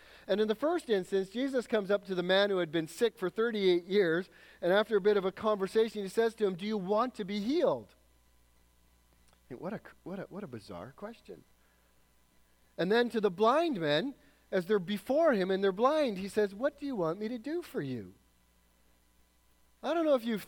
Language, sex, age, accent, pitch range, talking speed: English, male, 40-59, American, 180-240 Hz, 210 wpm